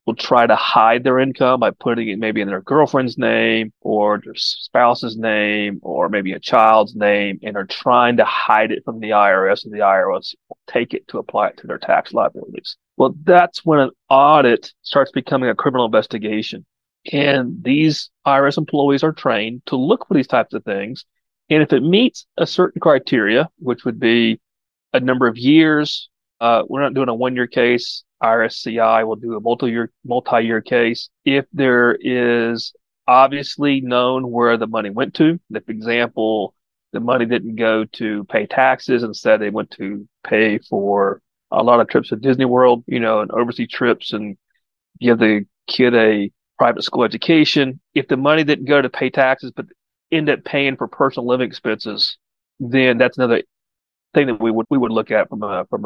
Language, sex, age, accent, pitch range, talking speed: English, male, 30-49, American, 110-135 Hz, 185 wpm